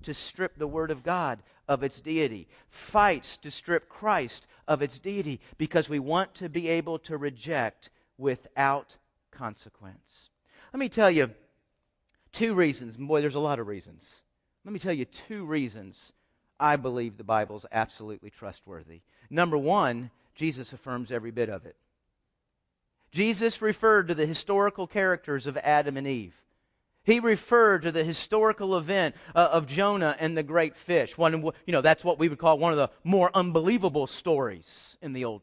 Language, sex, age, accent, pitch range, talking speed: English, male, 40-59, American, 135-185 Hz, 170 wpm